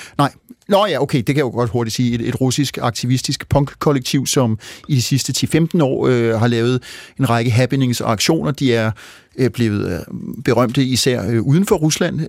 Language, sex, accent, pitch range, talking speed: Danish, male, native, 120-145 Hz, 190 wpm